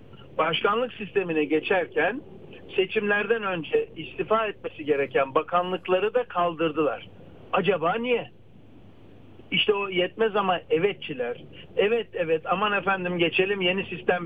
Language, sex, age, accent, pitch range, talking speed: Turkish, male, 60-79, native, 160-250 Hz, 105 wpm